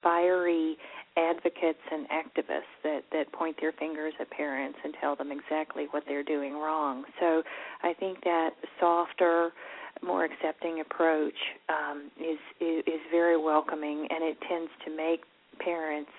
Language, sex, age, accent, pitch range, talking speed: English, female, 40-59, American, 155-180 Hz, 140 wpm